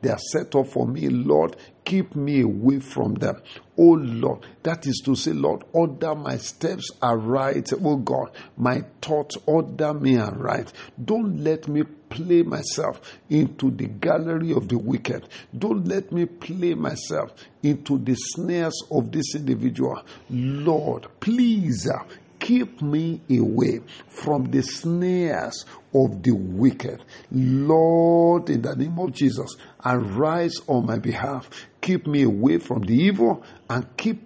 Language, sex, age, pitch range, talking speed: English, male, 50-69, 130-165 Hz, 145 wpm